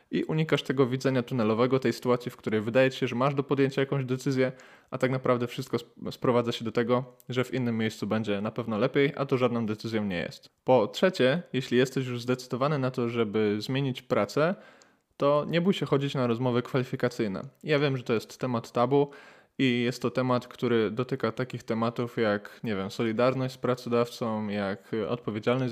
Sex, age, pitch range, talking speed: male, 20-39, 115-135 Hz, 190 wpm